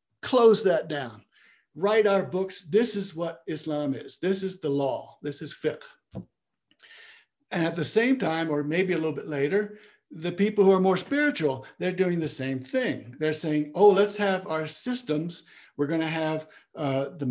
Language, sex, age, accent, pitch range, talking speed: English, male, 60-79, American, 150-200 Hz, 180 wpm